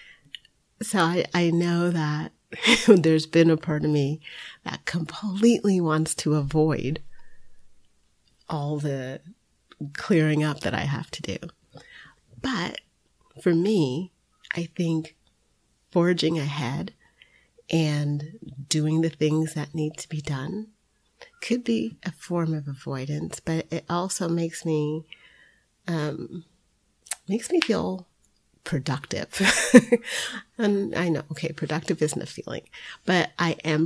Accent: American